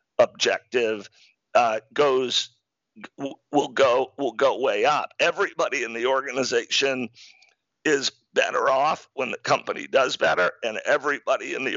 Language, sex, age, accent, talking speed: English, male, 50-69, American, 135 wpm